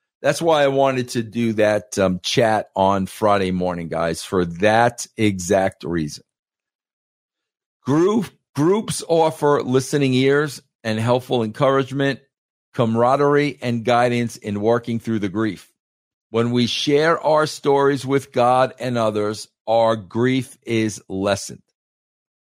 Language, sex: English, male